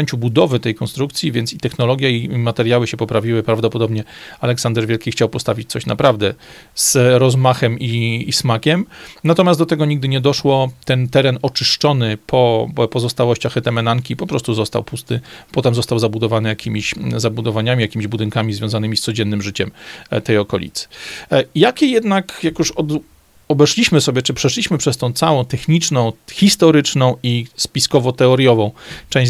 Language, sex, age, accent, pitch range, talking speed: Polish, male, 40-59, native, 115-140 Hz, 140 wpm